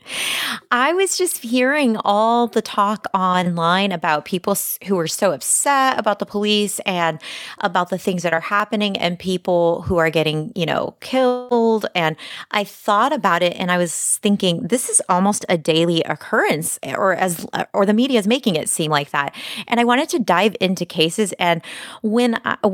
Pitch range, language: 170-215 Hz, English